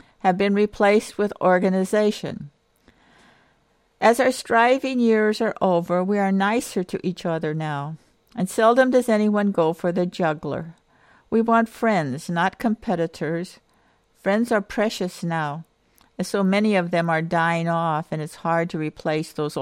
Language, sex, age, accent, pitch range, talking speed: English, female, 60-79, American, 160-210 Hz, 150 wpm